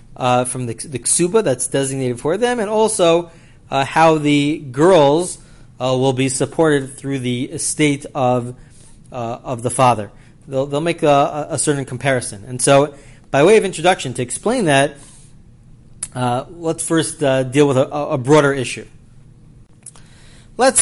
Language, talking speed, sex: English, 155 wpm, male